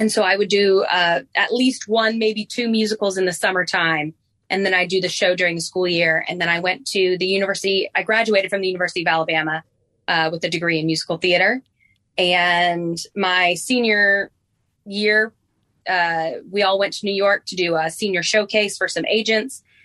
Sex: female